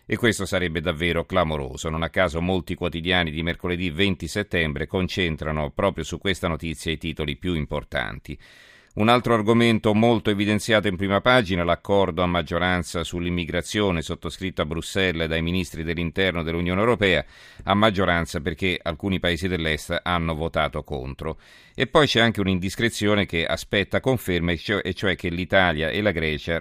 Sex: male